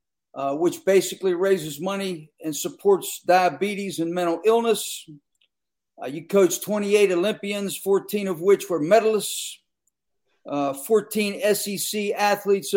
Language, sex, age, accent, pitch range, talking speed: English, male, 50-69, American, 175-205 Hz, 120 wpm